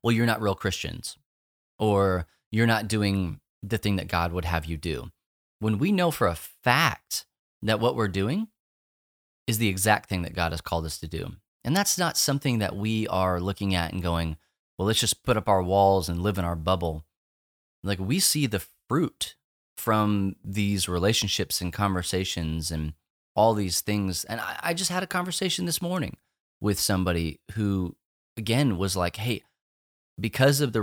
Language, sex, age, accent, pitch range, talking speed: English, male, 30-49, American, 85-110 Hz, 180 wpm